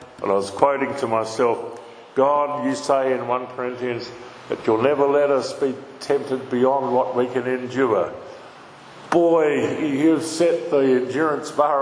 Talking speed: 150 wpm